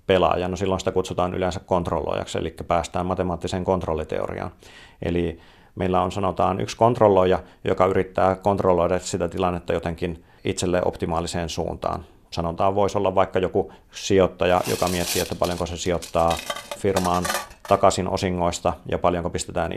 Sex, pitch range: male, 85-95 Hz